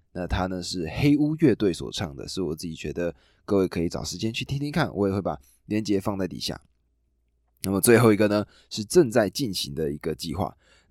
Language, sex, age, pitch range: Chinese, male, 20-39, 85-115 Hz